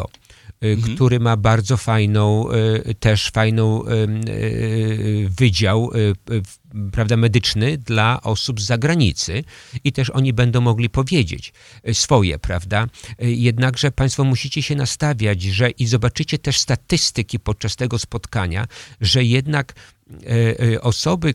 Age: 50-69